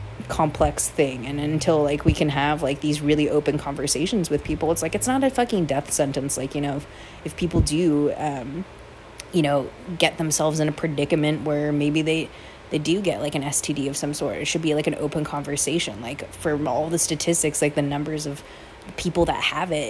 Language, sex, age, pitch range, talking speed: English, female, 20-39, 145-165 Hz, 210 wpm